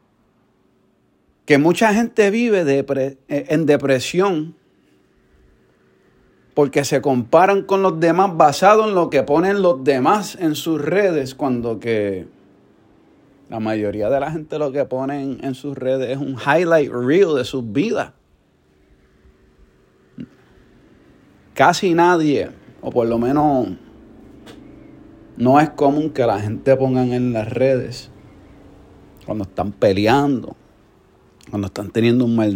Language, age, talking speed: Spanish, 30-49, 125 wpm